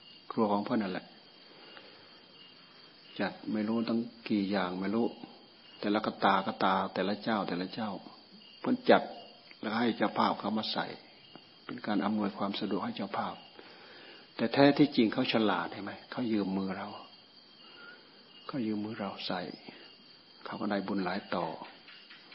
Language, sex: Thai, male